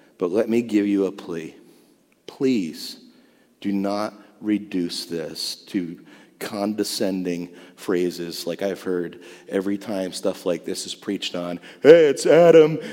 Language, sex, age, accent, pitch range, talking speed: English, male, 40-59, American, 95-155 Hz, 135 wpm